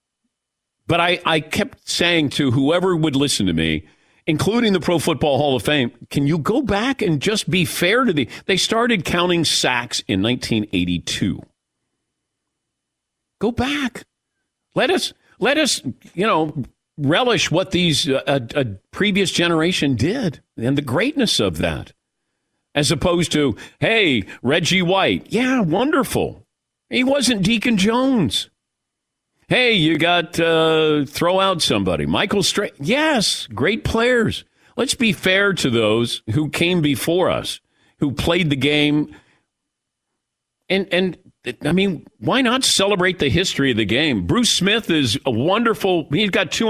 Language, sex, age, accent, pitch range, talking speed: English, male, 50-69, American, 140-195 Hz, 145 wpm